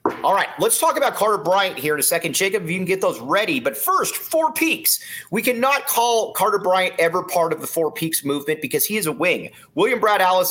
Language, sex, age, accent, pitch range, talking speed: English, male, 30-49, American, 165-250 Hz, 240 wpm